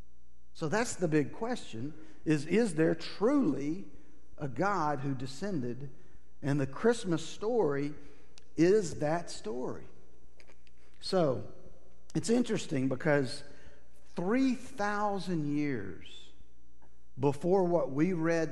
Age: 50-69